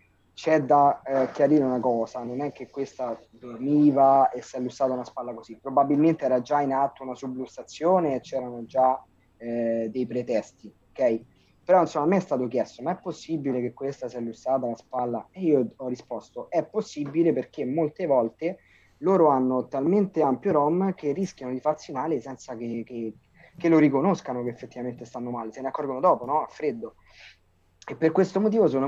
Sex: male